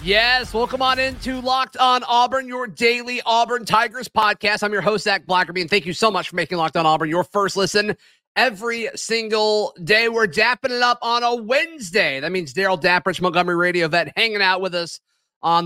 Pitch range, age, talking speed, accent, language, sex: 175-215 Hz, 30-49, 200 wpm, American, English, male